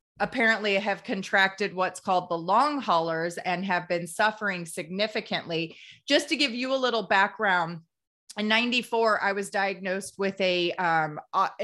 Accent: American